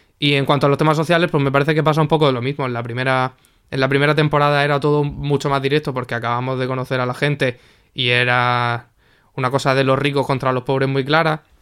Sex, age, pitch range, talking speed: male, 20-39, 125-145 Hz, 250 wpm